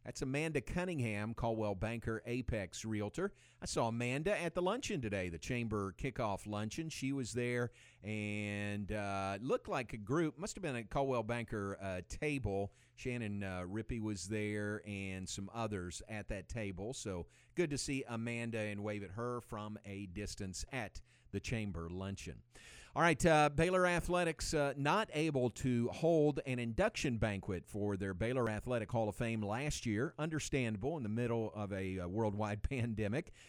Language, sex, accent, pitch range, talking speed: English, male, American, 105-140 Hz, 165 wpm